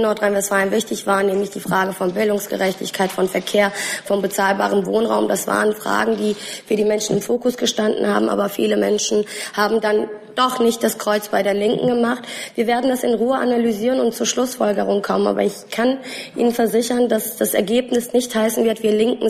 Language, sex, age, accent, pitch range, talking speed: German, female, 20-39, German, 210-245 Hz, 185 wpm